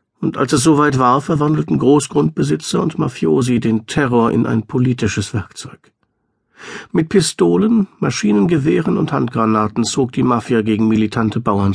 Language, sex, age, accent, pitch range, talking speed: German, male, 50-69, German, 115-165 Hz, 135 wpm